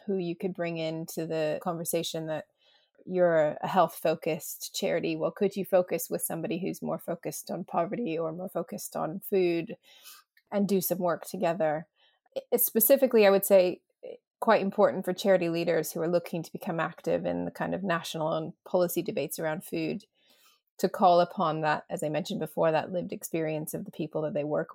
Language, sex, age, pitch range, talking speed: English, female, 30-49, 165-195 Hz, 185 wpm